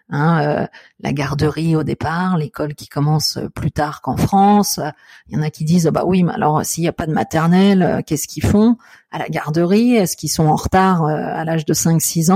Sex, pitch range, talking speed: female, 155-185 Hz, 215 wpm